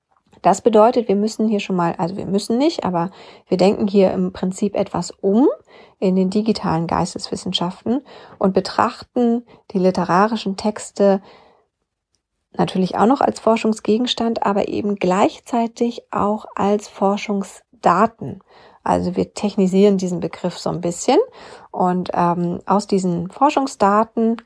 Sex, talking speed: female, 130 wpm